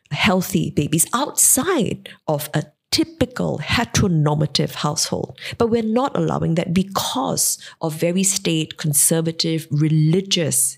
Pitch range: 165-230 Hz